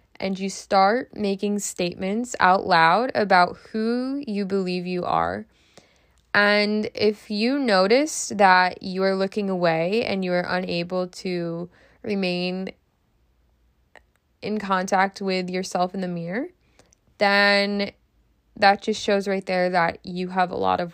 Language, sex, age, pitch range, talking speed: English, female, 20-39, 180-210 Hz, 135 wpm